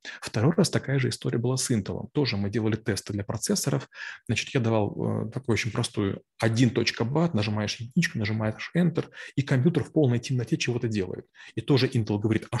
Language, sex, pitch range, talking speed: Russian, male, 110-130 Hz, 175 wpm